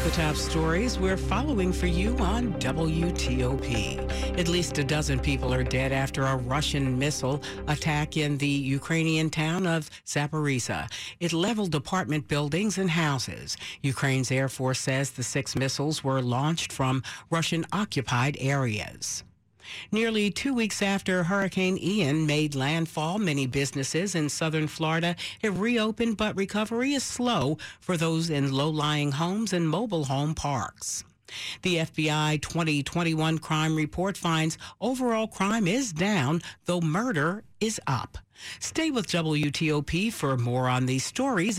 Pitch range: 135-170 Hz